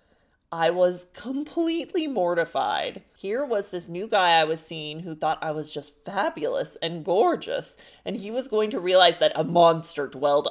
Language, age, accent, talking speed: English, 20-39, American, 170 wpm